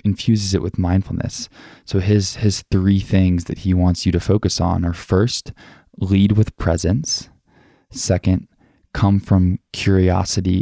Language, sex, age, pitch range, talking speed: English, male, 20-39, 90-100 Hz, 140 wpm